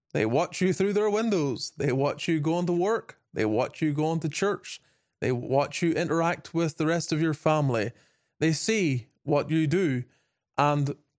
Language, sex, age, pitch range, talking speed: English, male, 20-39, 140-175 Hz, 180 wpm